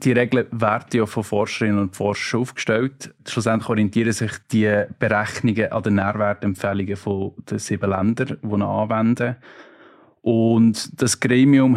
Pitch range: 100-120 Hz